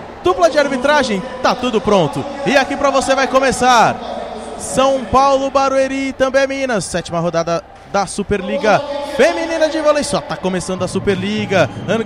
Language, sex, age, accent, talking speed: Portuguese, male, 20-39, Brazilian, 150 wpm